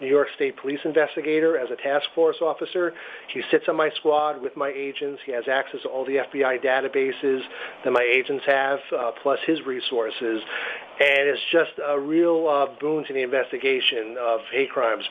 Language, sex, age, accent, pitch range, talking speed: English, male, 40-59, American, 130-170 Hz, 185 wpm